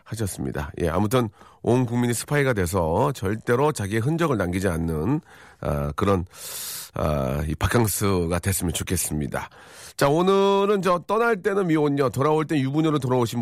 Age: 40-59